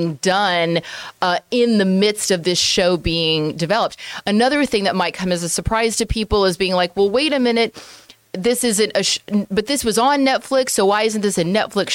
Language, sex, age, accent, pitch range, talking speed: English, female, 30-49, American, 175-235 Hz, 210 wpm